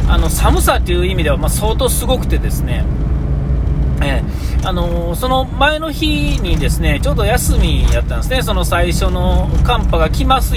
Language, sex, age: Japanese, male, 40-59